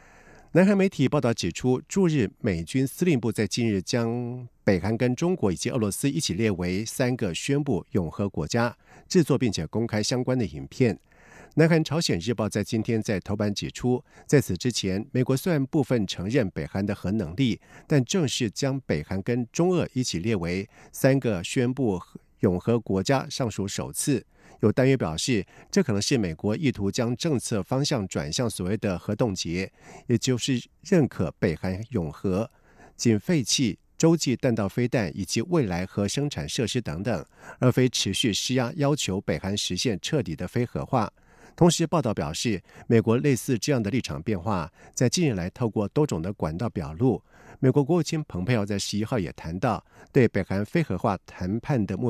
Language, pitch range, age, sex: Chinese, 100-135 Hz, 50-69, male